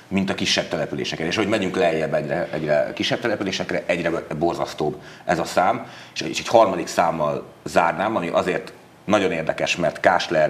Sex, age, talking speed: male, 30-49, 160 wpm